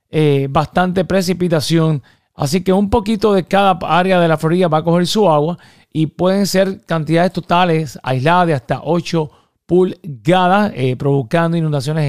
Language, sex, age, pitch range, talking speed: English, male, 30-49, 155-195 Hz, 155 wpm